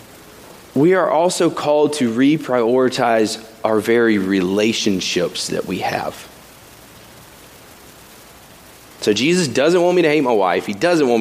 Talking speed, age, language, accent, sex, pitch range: 130 wpm, 30-49, English, American, male, 110-140 Hz